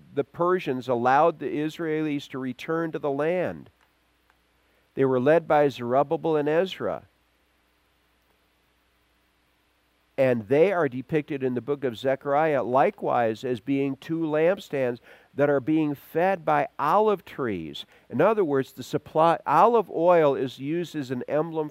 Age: 50-69